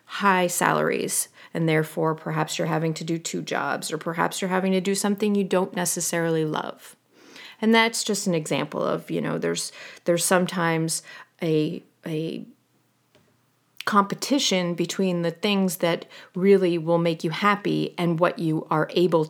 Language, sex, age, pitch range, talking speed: English, female, 30-49, 170-200 Hz, 155 wpm